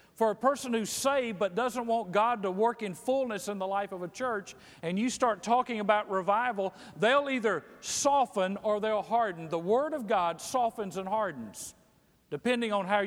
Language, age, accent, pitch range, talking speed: English, 50-69, American, 195-245 Hz, 190 wpm